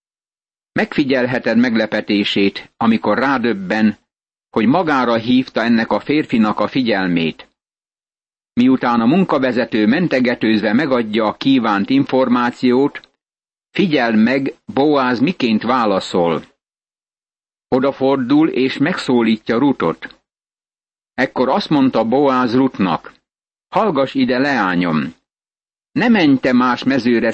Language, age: Hungarian, 60-79